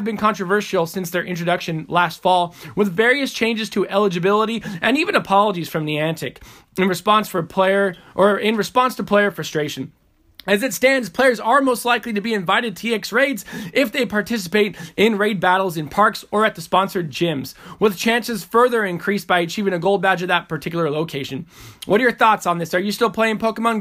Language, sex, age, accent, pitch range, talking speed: English, male, 20-39, American, 180-235 Hz, 195 wpm